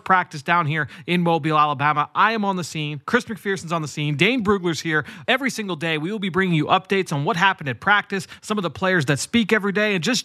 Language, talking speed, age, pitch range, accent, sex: English, 250 wpm, 30-49, 165-200 Hz, American, male